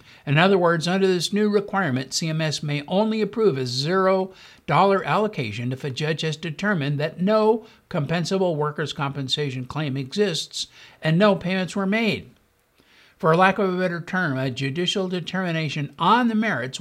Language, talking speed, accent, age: English, 155 wpm, American, 60-79